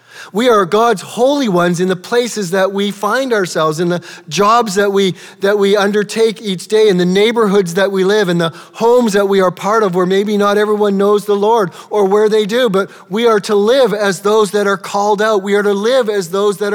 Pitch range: 165-210 Hz